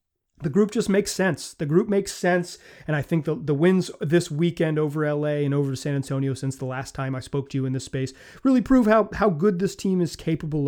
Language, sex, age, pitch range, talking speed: English, male, 30-49, 140-170 Hz, 245 wpm